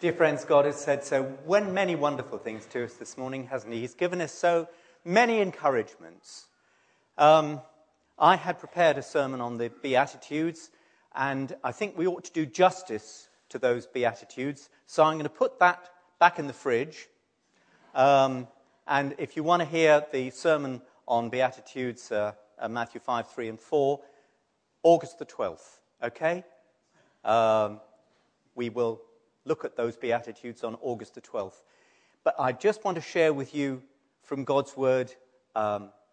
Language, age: English, 40-59